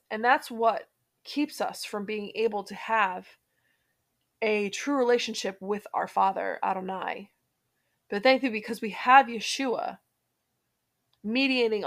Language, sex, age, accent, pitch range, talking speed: English, female, 20-39, American, 200-255 Hz, 125 wpm